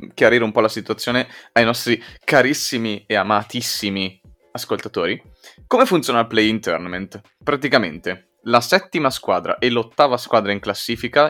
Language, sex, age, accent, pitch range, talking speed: Italian, male, 20-39, native, 100-120 Hz, 140 wpm